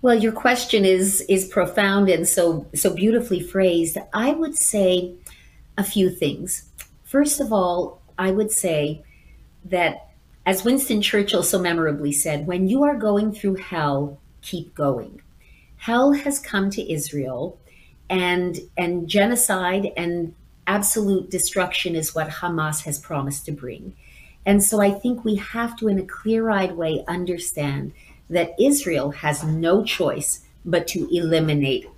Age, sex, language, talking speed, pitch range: 40-59, female, English, 145 wpm, 170-215 Hz